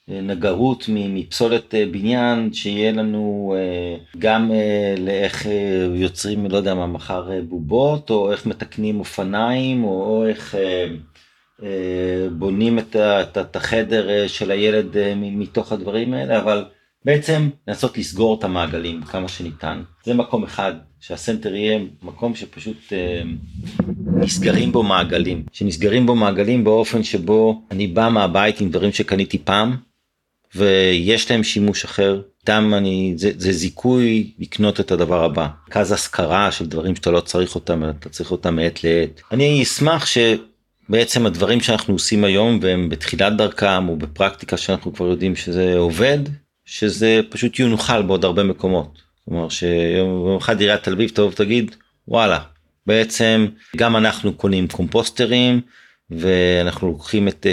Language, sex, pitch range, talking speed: Hebrew, male, 90-110 Hz, 125 wpm